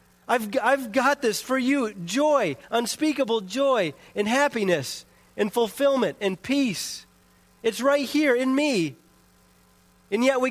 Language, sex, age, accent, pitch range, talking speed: English, male, 40-59, American, 135-205 Hz, 130 wpm